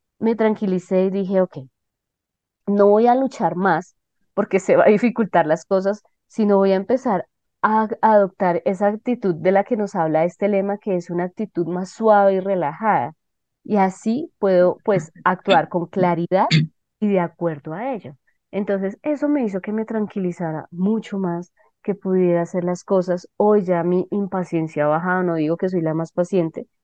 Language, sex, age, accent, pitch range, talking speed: Spanish, female, 20-39, Colombian, 170-200 Hz, 175 wpm